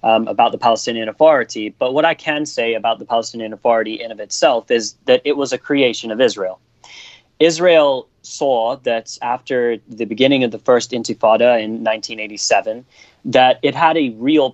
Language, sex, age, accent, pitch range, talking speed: English, male, 30-49, American, 110-135 Hz, 175 wpm